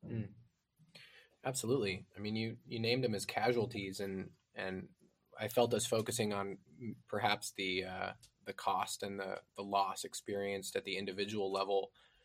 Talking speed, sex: 145 wpm, male